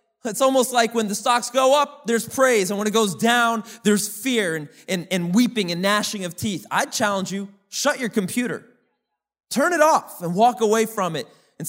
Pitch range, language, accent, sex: 155-215 Hz, English, American, male